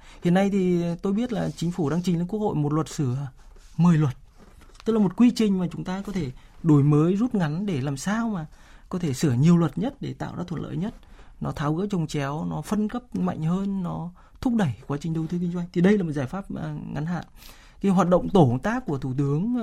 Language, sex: Vietnamese, male